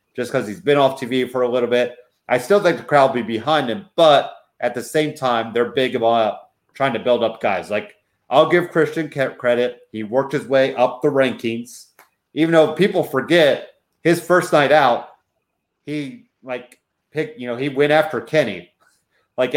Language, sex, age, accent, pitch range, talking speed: English, male, 30-49, American, 115-150 Hz, 190 wpm